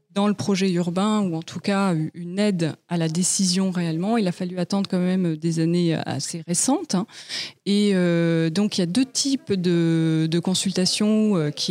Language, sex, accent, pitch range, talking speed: French, female, French, 165-200 Hz, 180 wpm